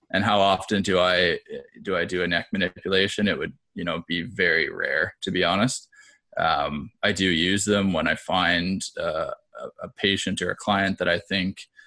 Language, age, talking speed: English, 20-39, 185 wpm